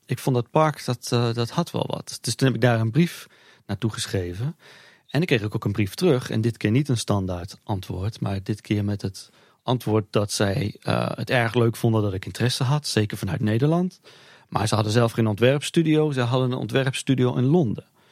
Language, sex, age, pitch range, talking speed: Dutch, male, 40-59, 110-135 Hz, 220 wpm